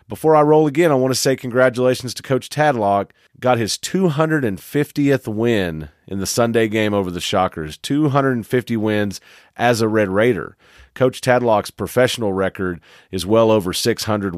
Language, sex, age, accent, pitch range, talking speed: English, male, 40-59, American, 100-125 Hz, 155 wpm